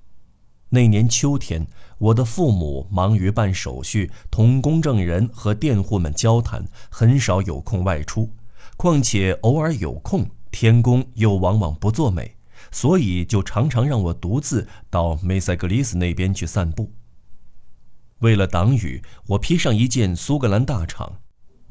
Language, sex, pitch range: Chinese, male, 95-120 Hz